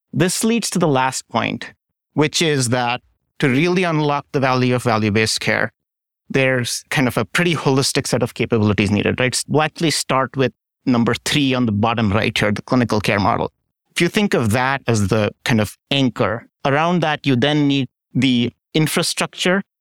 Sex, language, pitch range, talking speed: male, English, 120-145 Hz, 180 wpm